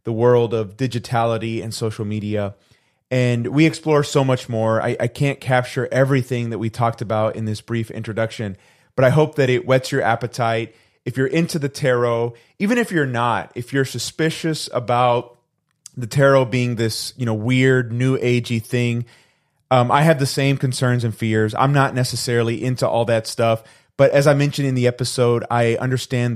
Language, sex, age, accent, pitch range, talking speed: English, male, 30-49, American, 115-130 Hz, 185 wpm